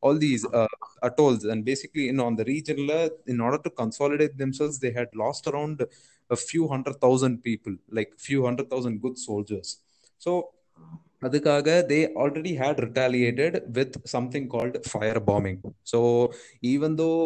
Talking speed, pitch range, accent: 160 wpm, 115-150 Hz, native